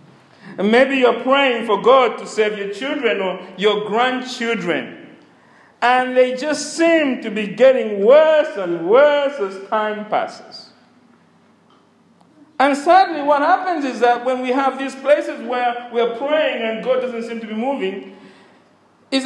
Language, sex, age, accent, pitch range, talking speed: English, male, 50-69, Nigerian, 210-275 Hz, 145 wpm